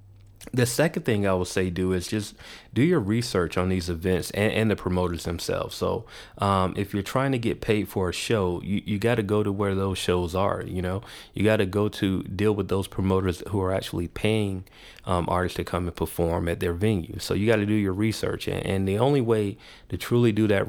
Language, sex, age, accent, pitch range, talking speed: English, male, 30-49, American, 90-105 Hz, 235 wpm